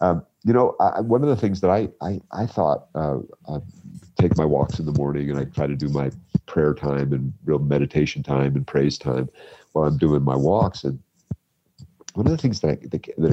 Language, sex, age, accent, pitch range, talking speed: English, male, 50-69, American, 70-100 Hz, 205 wpm